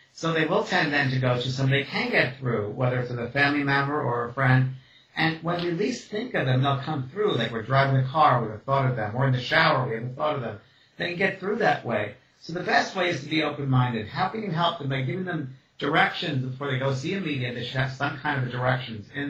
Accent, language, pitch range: American, English, 125-155 Hz